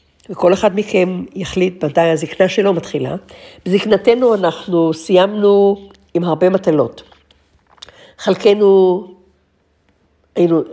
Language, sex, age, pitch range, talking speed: Hebrew, female, 60-79, 155-200 Hz, 90 wpm